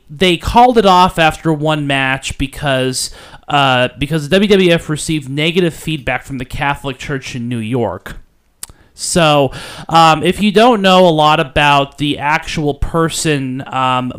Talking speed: 150 wpm